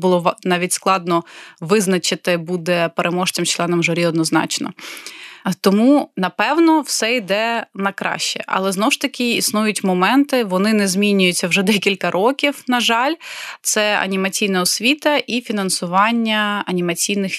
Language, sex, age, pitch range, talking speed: English, female, 20-39, 180-230 Hz, 120 wpm